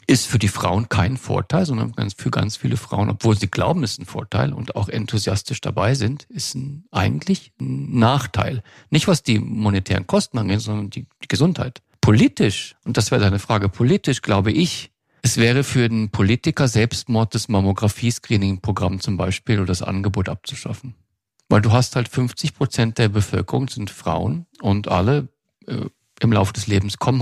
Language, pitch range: German, 100-125 Hz